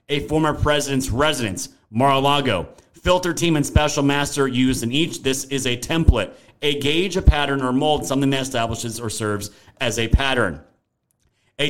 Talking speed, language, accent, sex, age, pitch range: 165 wpm, English, American, male, 30-49, 125-155 Hz